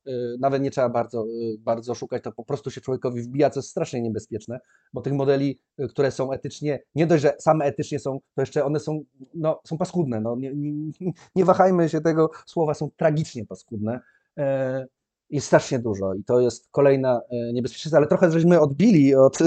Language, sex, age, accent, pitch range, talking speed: Polish, male, 30-49, native, 135-190 Hz, 180 wpm